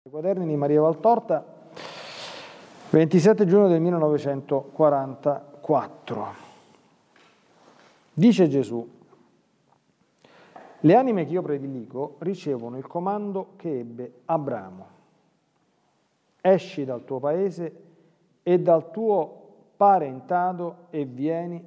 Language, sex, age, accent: Italian, male, 40-59, native